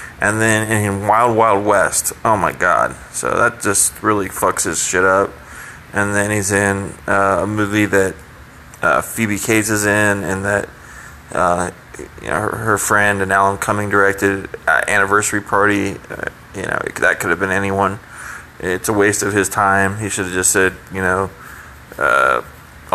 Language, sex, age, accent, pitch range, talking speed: English, male, 30-49, American, 95-110 Hz, 180 wpm